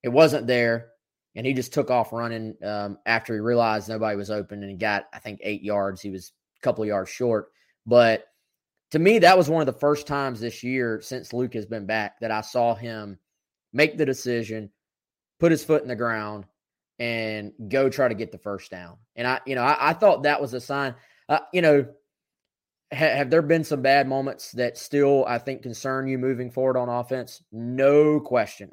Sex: male